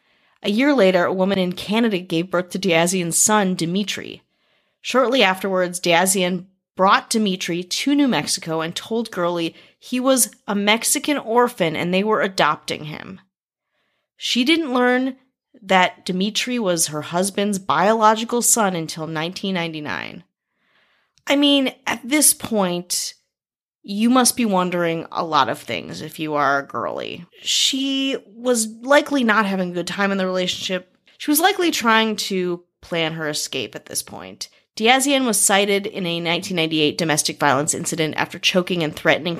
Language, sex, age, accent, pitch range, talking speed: English, female, 30-49, American, 170-230 Hz, 150 wpm